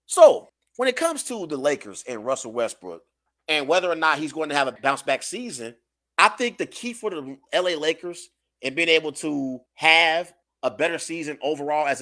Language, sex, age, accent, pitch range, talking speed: English, male, 30-49, American, 155-245 Hz, 200 wpm